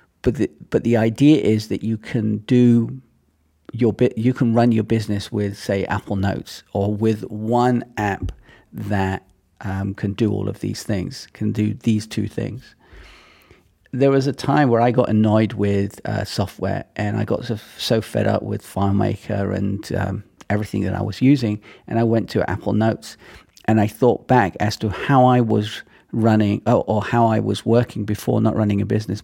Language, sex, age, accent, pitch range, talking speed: English, male, 40-59, British, 105-120 Hz, 185 wpm